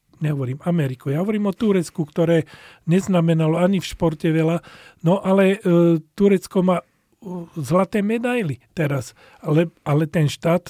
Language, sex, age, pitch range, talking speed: Slovak, male, 40-59, 155-175 Hz, 135 wpm